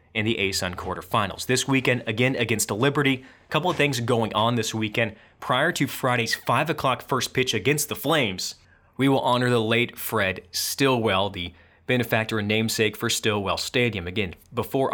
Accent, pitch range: American, 100-125 Hz